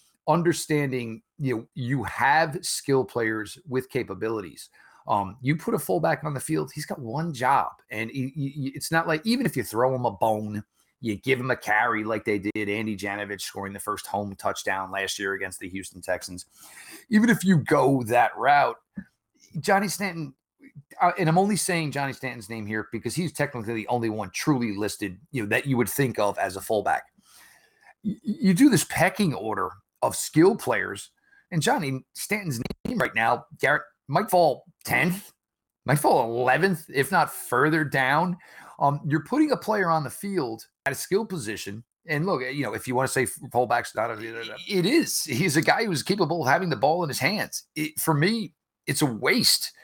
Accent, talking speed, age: American, 185 wpm, 30-49